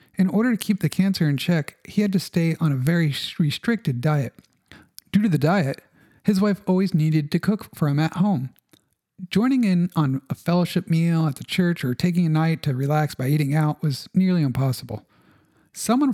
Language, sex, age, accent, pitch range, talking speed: English, male, 50-69, American, 150-195 Hz, 195 wpm